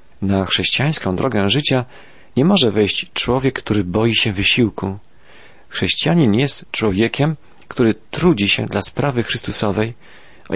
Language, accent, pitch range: Polish, native, 100-130 Hz